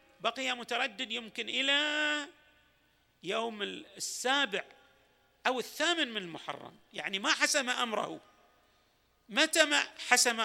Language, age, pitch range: Arabic, 50-69, 190-260 Hz